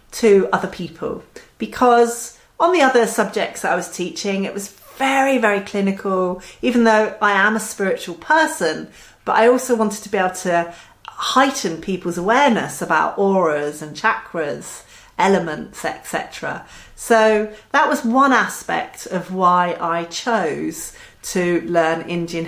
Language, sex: English, female